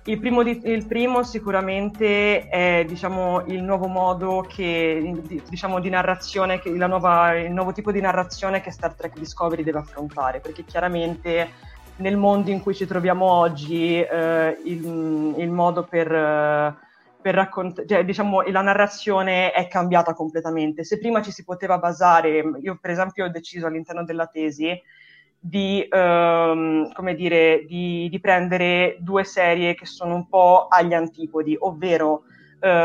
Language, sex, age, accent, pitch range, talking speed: Italian, female, 20-39, native, 165-195 Hz, 130 wpm